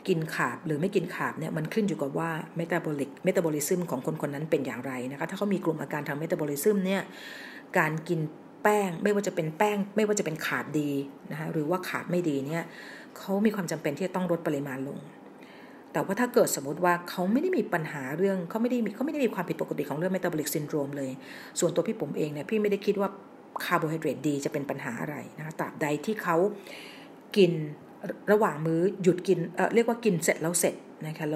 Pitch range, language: 155-200 Hz, Thai